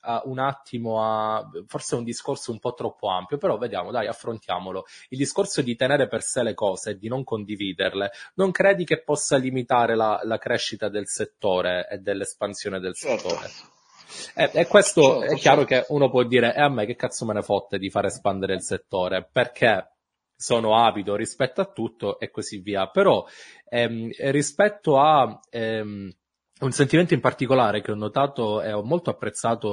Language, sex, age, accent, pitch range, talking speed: Italian, male, 20-39, native, 105-135 Hz, 180 wpm